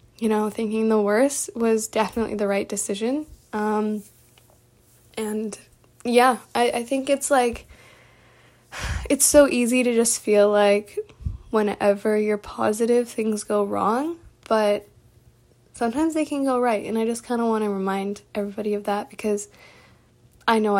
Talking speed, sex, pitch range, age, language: 145 wpm, female, 205-235 Hz, 10-29, English